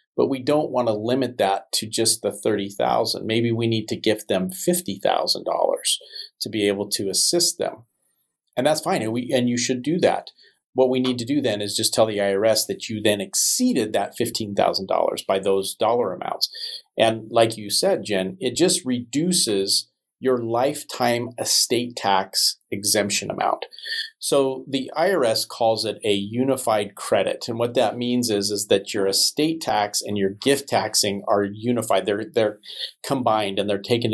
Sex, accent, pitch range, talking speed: male, American, 105-145 Hz, 170 wpm